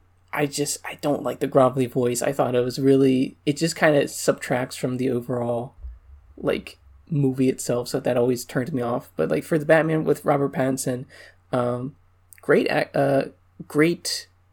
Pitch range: 125-145 Hz